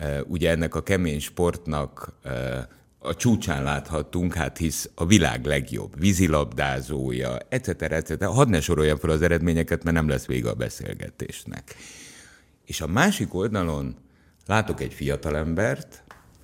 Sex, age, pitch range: male, 60-79, 70-90 Hz